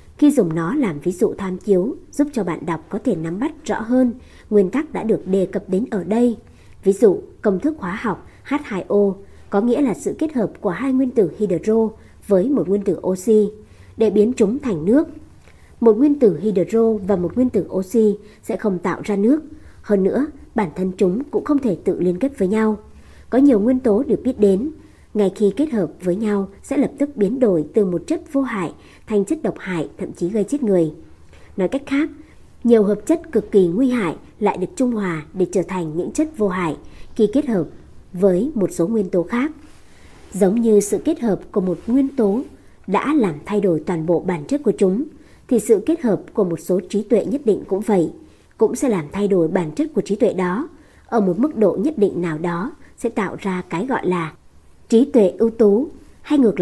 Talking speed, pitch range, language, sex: 220 wpm, 185-255 Hz, Vietnamese, male